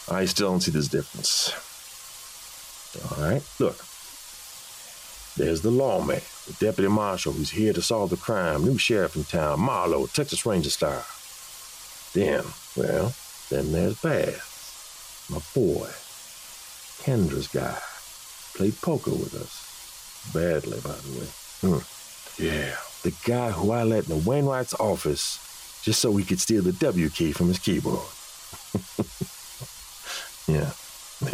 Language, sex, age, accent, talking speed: English, male, 50-69, American, 130 wpm